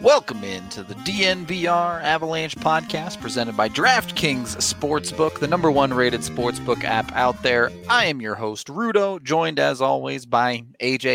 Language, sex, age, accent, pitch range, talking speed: English, male, 30-49, American, 125-170 Hz, 150 wpm